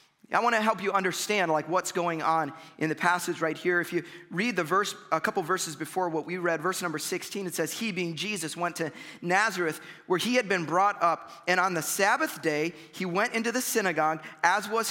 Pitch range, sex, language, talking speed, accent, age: 170-220 Hz, male, English, 225 wpm, American, 30-49